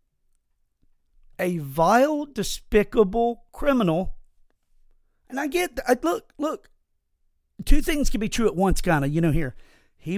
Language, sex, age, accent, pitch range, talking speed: English, male, 50-69, American, 150-230 Hz, 130 wpm